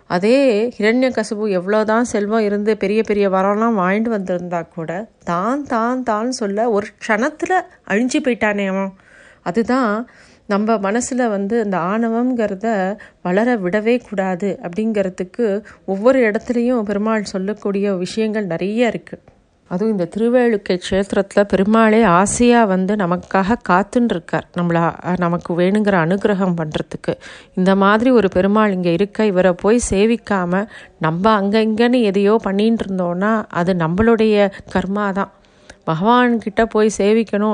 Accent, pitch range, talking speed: native, 190-225 Hz, 110 wpm